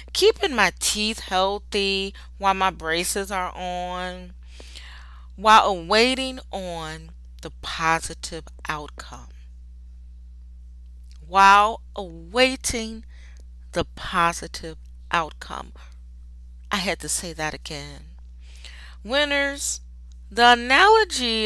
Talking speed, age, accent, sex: 80 wpm, 30-49, American, female